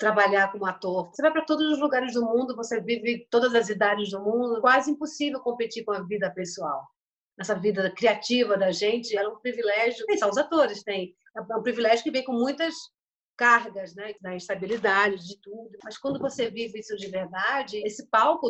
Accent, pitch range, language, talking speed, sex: Brazilian, 200-260 Hz, Portuguese, 195 wpm, female